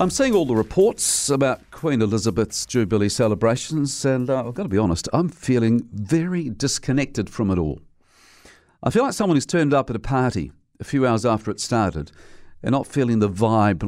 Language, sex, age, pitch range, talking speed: English, male, 50-69, 95-135 Hz, 195 wpm